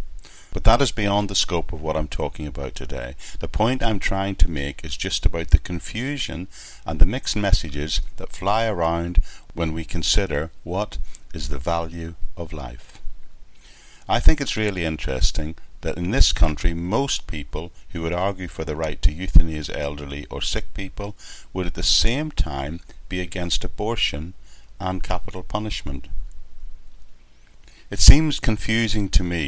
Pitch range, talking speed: 75-95 Hz, 160 wpm